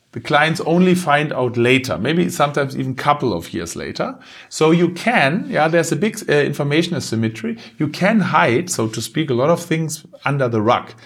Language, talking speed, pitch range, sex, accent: English, 200 wpm, 140-180 Hz, male, German